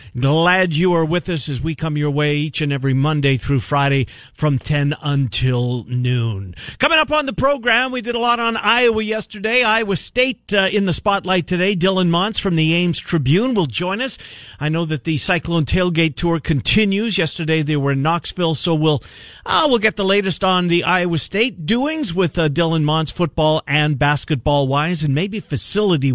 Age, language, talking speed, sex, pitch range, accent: 50-69, English, 195 wpm, male, 140-185 Hz, American